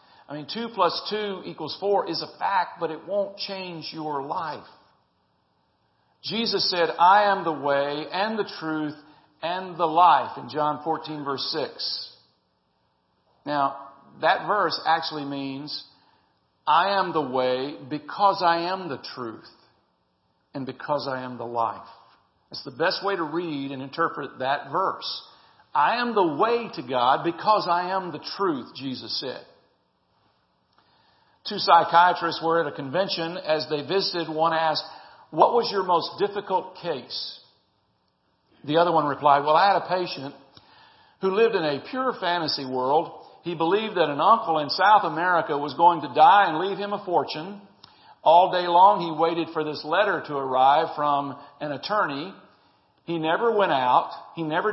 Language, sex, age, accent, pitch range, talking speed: English, male, 50-69, American, 140-185 Hz, 160 wpm